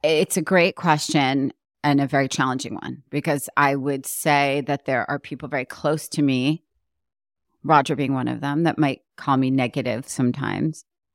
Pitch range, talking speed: 140-165 Hz, 170 wpm